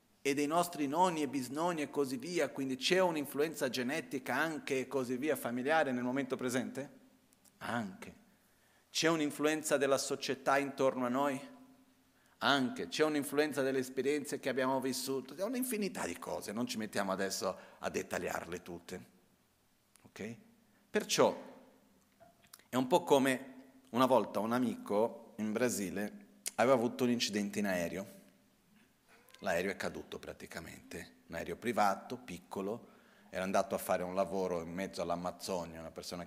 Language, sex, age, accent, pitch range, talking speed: Italian, male, 40-59, native, 95-150 Hz, 140 wpm